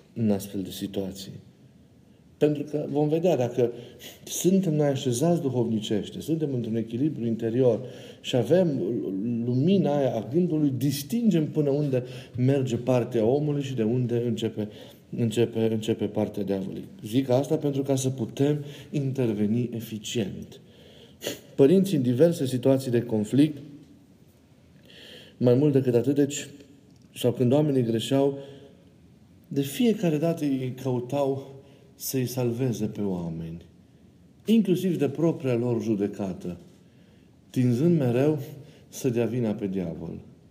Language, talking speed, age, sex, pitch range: Romanian, 120 wpm, 50-69, male, 105-140 Hz